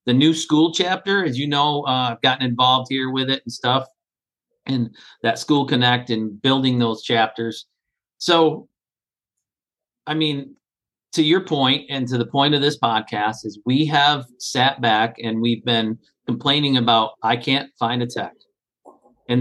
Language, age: English, 50-69